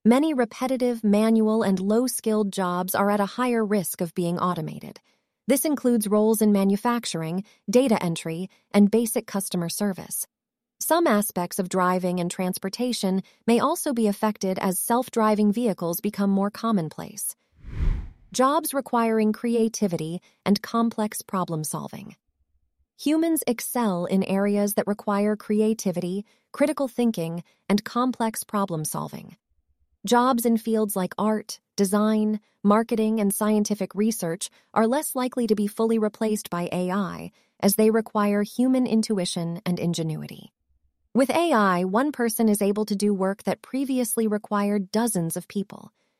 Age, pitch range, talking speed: 30-49, 195-235 Hz, 130 wpm